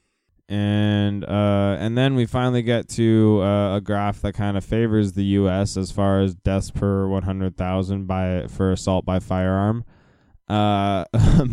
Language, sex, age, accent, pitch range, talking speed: English, male, 10-29, American, 85-100 Hz, 160 wpm